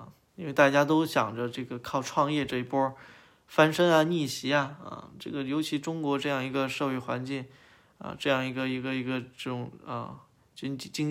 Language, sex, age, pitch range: Chinese, male, 20-39, 130-155 Hz